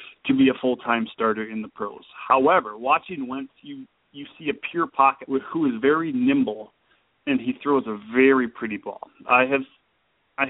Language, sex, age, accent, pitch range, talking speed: English, male, 30-49, American, 120-150 Hz, 175 wpm